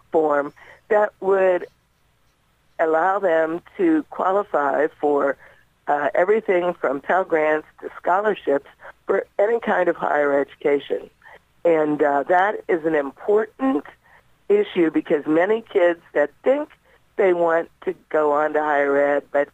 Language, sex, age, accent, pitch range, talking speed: English, female, 60-79, American, 150-205 Hz, 130 wpm